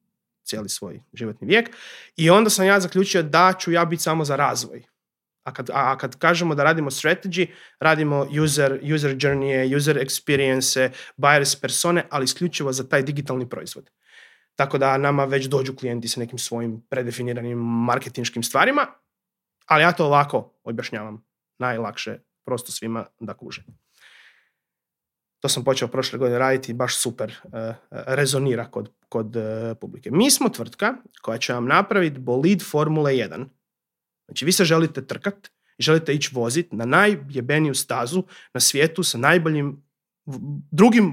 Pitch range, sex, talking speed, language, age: 130-175 Hz, male, 145 wpm, Croatian, 30-49